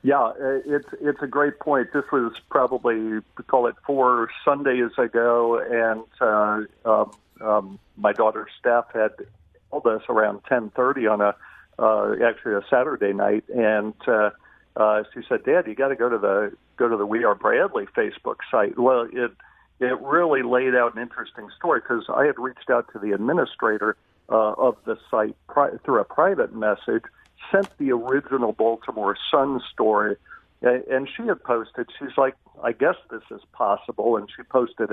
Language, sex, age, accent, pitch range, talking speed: English, male, 50-69, American, 115-160 Hz, 170 wpm